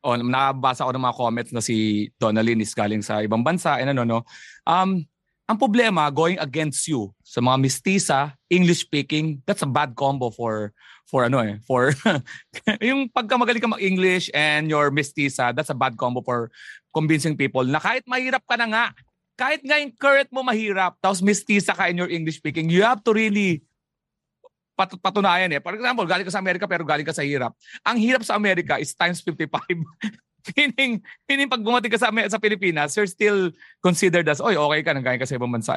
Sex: male